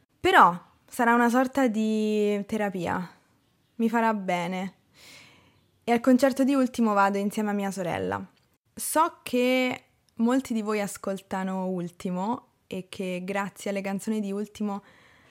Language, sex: Italian, female